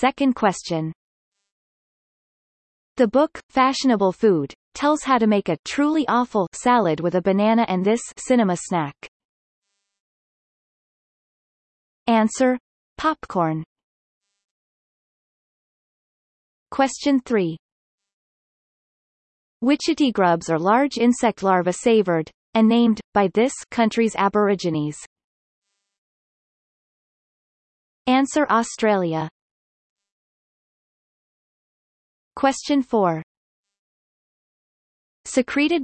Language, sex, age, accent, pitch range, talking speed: English, female, 30-49, American, 185-250 Hz, 70 wpm